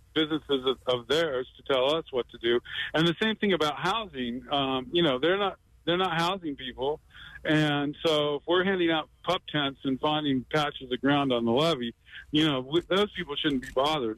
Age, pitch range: 50-69, 130-160 Hz